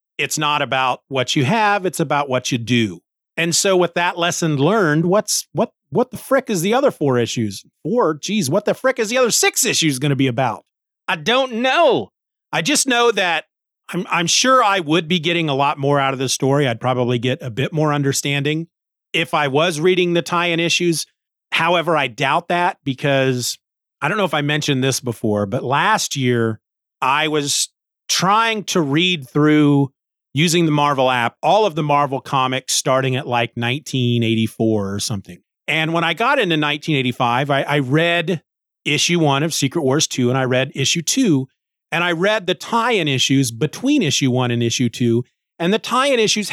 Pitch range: 130-175 Hz